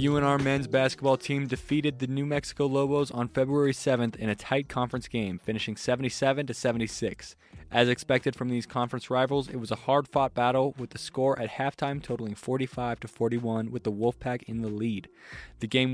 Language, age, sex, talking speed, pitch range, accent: English, 20-39, male, 185 wpm, 115-135 Hz, American